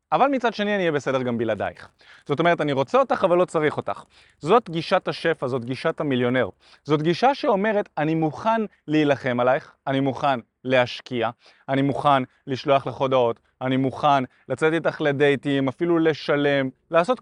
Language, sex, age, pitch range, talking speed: Hebrew, male, 20-39, 135-185 Hz, 160 wpm